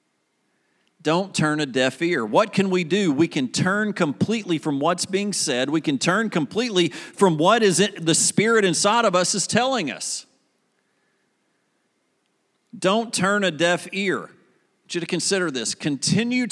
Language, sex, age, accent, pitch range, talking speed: English, male, 50-69, American, 175-235 Hz, 155 wpm